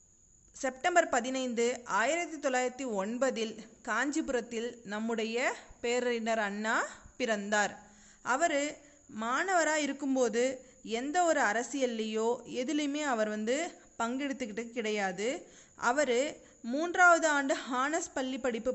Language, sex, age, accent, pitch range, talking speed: Tamil, female, 30-49, native, 225-285 Hz, 85 wpm